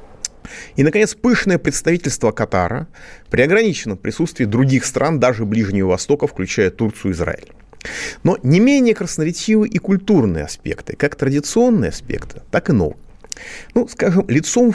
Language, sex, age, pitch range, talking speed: Russian, male, 30-49, 105-170 Hz, 135 wpm